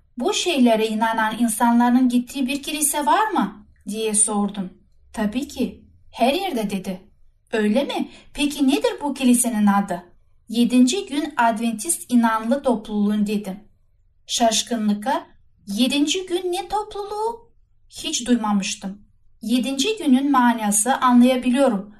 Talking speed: 110 wpm